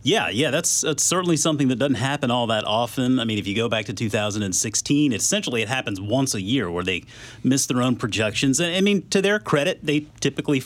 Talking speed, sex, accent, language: 215 wpm, male, American, English